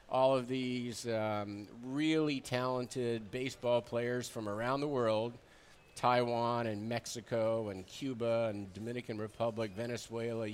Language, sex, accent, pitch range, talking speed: English, male, American, 110-130 Hz, 120 wpm